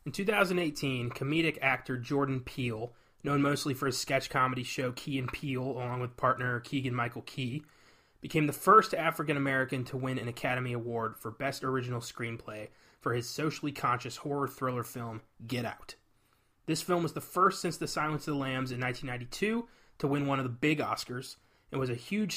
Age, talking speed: 30-49, 175 wpm